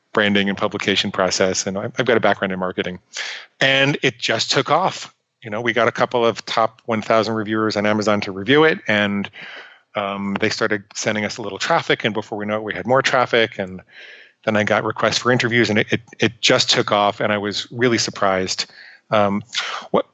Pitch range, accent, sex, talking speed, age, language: 105-130 Hz, American, male, 210 wpm, 30-49, English